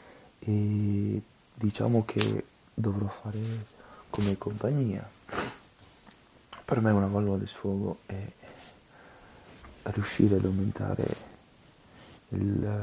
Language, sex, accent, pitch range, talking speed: Italian, male, native, 100-115 Hz, 80 wpm